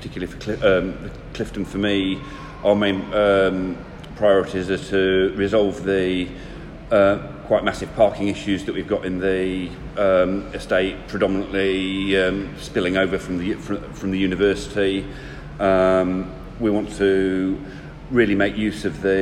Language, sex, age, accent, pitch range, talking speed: English, male, 40-59, British, 95-105 Hz, 145 wpm